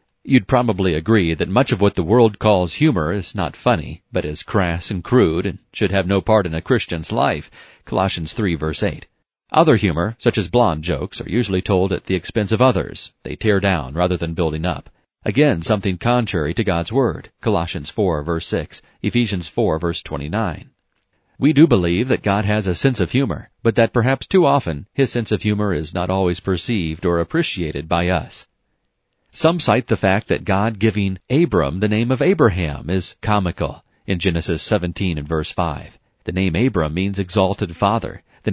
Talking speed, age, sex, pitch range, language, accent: 190 wpm, 40-59, male, 90-115 Hz, English, American